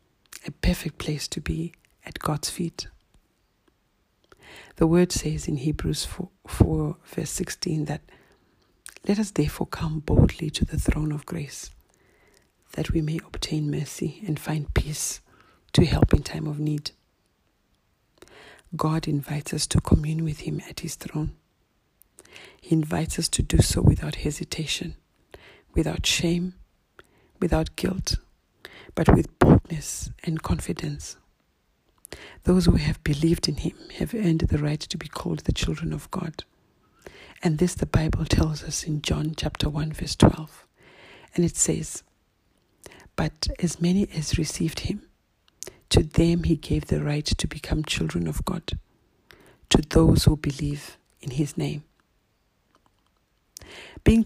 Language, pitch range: English, 150-170 Hz